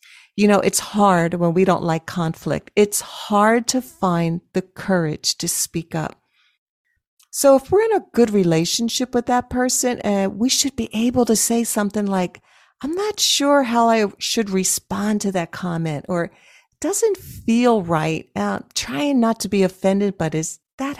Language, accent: English, American